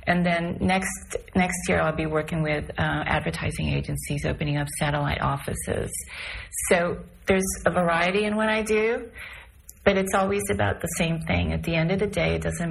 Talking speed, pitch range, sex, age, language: 185 wpm, 145-175 Hz, female, 30-49, English